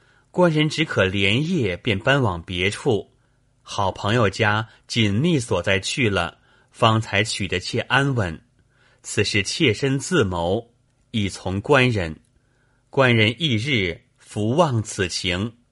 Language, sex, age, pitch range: Chinese, male, 30-49, 100-130 Hz